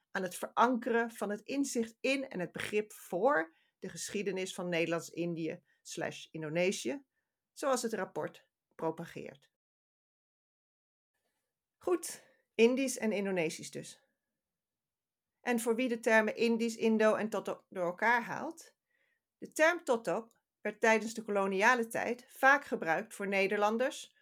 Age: 40-59